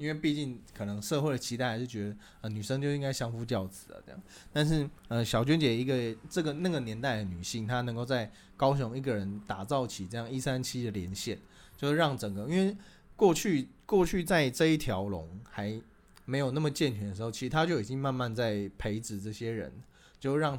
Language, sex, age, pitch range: Chinese, male, 20-39, 105-140 Hz